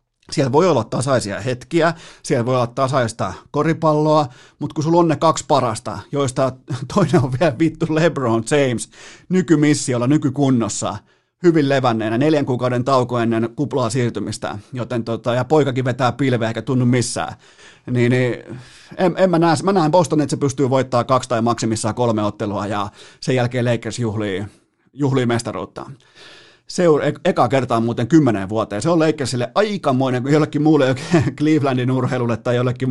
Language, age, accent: Finnish, 30-49, native